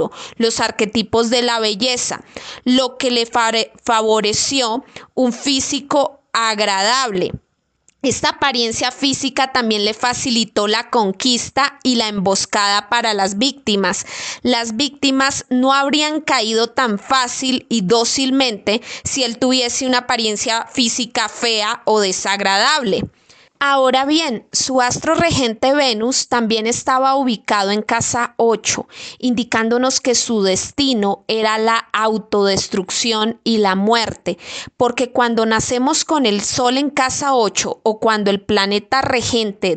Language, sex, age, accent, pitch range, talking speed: Spanish, female, 20-39, Colombian, 220-260 Hz, 120 wpm